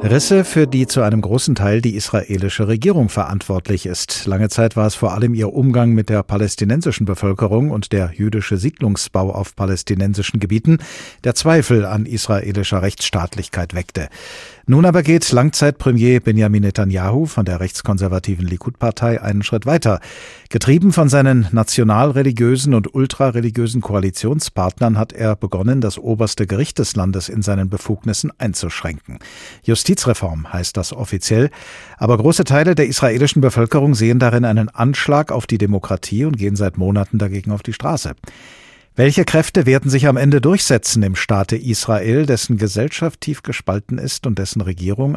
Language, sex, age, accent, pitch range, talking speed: German, male, 50-69, German, 100-130 Hz, 150 wpm